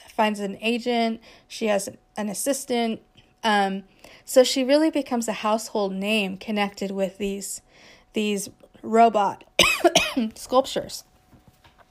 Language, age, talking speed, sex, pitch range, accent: English, 30-49, 105 wpm, female, 200-240 Hz, American